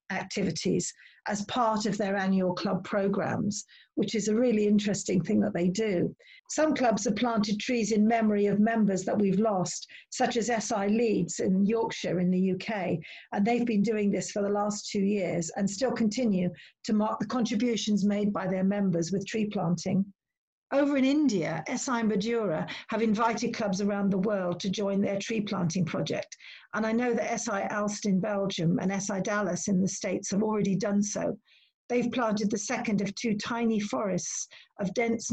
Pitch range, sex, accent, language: 195-230 Hz, female, British, English